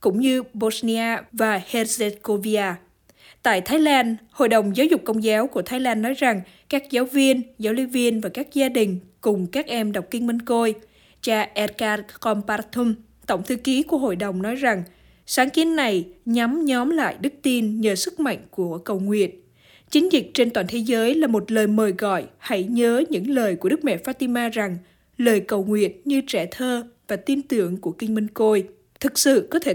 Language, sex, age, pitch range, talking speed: Vietnamese, female, 20-39, 205-255 Hz, 200 wpm